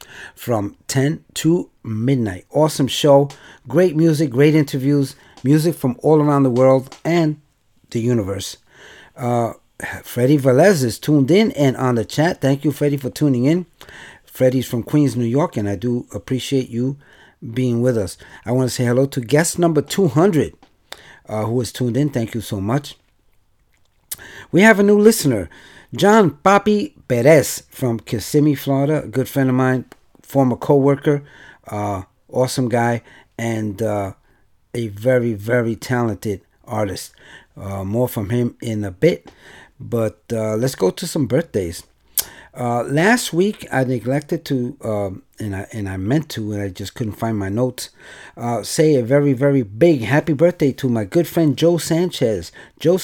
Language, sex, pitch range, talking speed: English, male, 115-150 Hz, 160 wpm